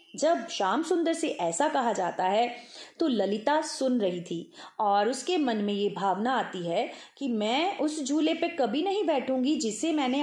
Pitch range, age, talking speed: 185-270 Hz, 30-49, 180 wpm